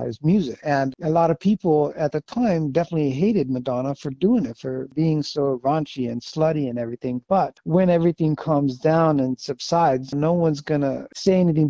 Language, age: English, 60-79